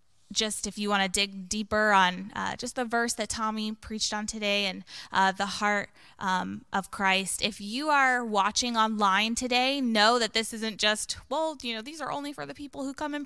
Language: English